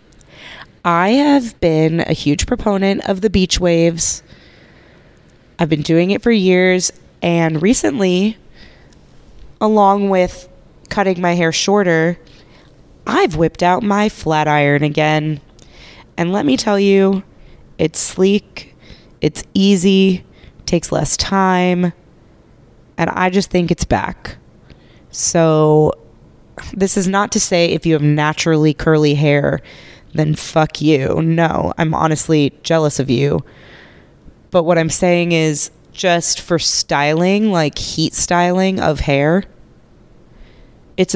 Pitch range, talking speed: 160-195 Hz, 120 wpm